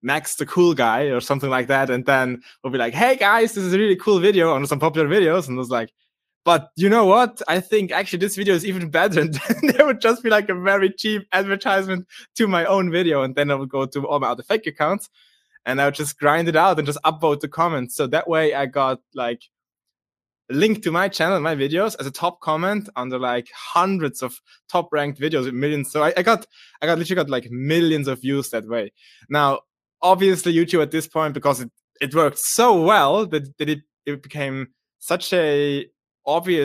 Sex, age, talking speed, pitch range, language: male, 20-39, 230 wpm, 135-185 Hz, English